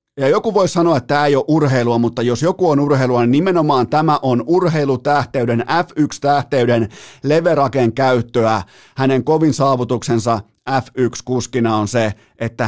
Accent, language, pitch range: native, Finnish, 110-140 Hz